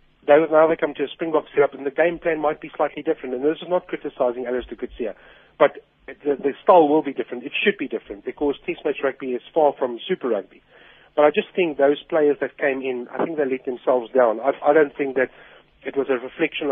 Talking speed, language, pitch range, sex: 240 wpm, English, 125-155 Hz, male